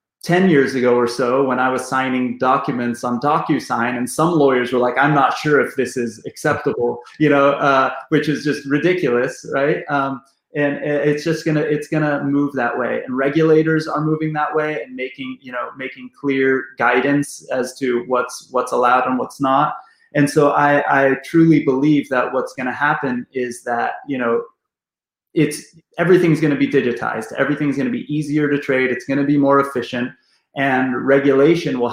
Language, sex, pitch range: English, male, 125-145 Hz